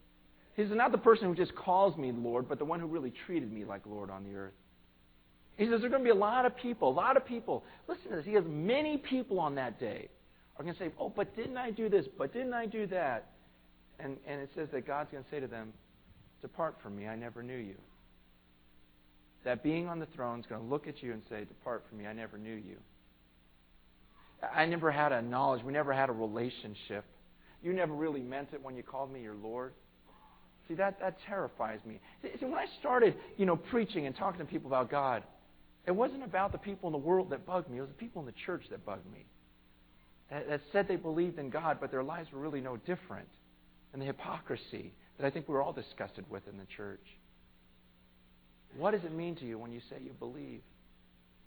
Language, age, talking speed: English, 40-59, 230 wpm